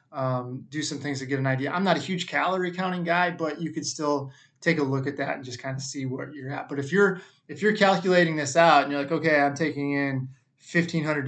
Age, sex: 20-39, male